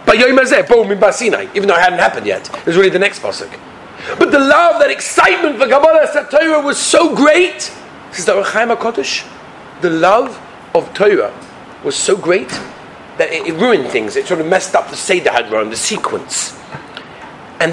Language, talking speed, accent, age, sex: English, 155 wpm, British, 40-59, male